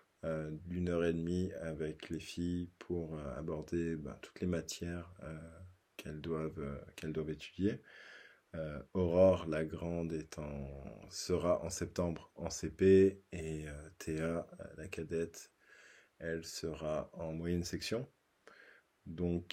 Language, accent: French, French